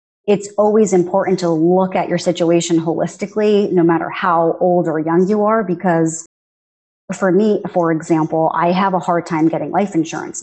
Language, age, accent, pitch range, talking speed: English, 30-49, American, 170-220 Hz, 175 wpm